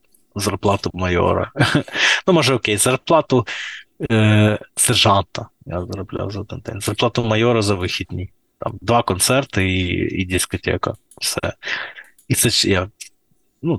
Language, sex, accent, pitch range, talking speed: Ukrainian, male, native, 100-125 Hz, 120 wpm